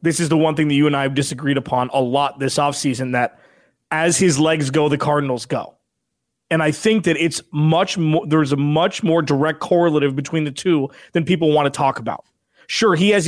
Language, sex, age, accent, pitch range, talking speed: English, male, 20-39, American, 145-170 Hz, 225 wpm